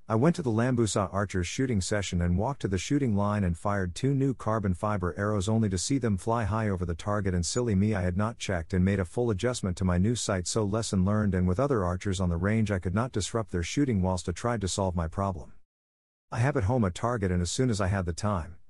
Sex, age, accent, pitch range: male, 50-69, American, 90-115 Hz